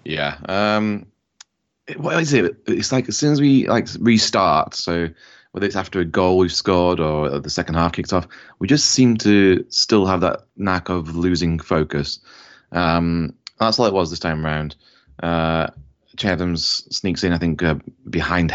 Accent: British